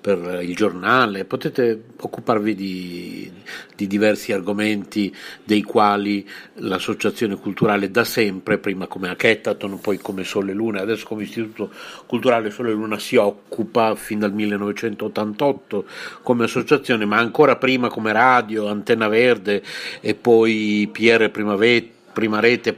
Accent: native